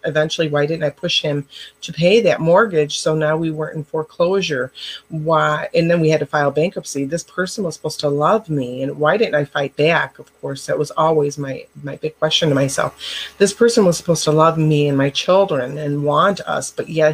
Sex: female